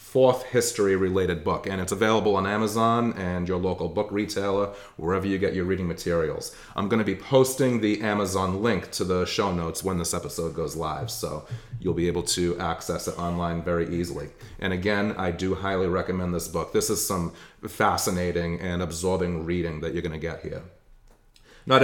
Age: 30-49